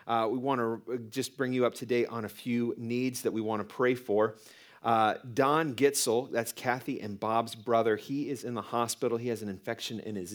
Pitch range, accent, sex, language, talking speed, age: 110-140 Hz, American, male, English, 225 wpm, 40-59